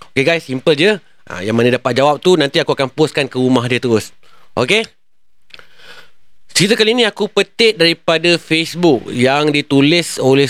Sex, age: male, 30-49